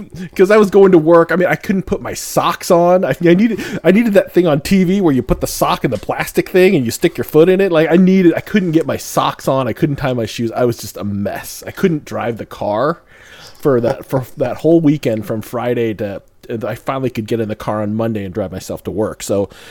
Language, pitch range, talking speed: English, 110-165 Hz, 260 wpm